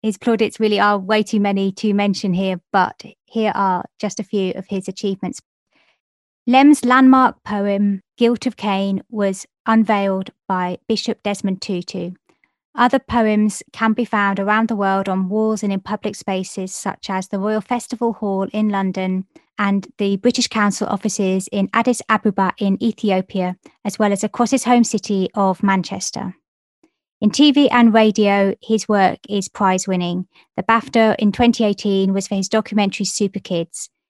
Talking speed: 160 wpm